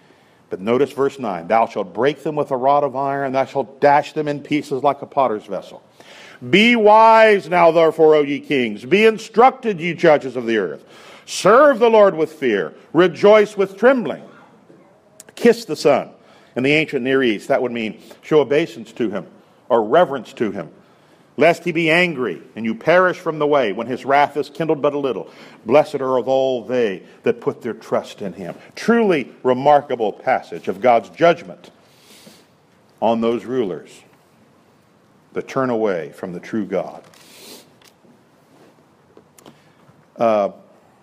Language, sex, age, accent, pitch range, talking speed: English, male, 50-69, American, 135-175 Hz, 160 wpm